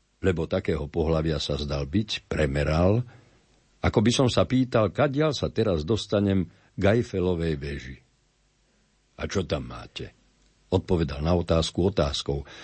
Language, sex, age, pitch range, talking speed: Slovak, male, 60-79, 80-105 Hz, 135 wpm